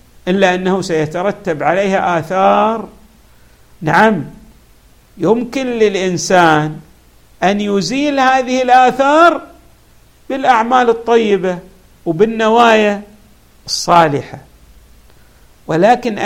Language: Arabic